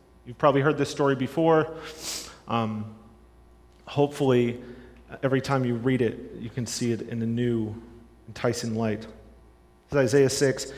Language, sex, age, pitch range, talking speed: English, male, 40-59, 120-145 Hz, 140 wpm